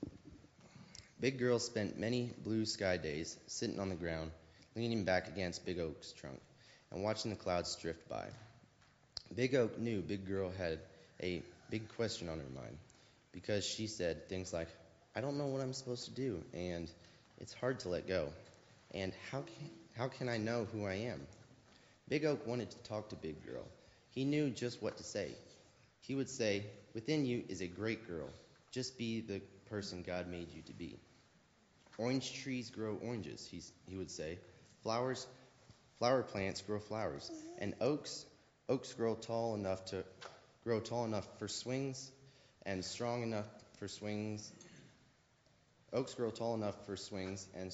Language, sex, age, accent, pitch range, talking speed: English, male, 30-49, American, 95-120 Hz, 165 wpm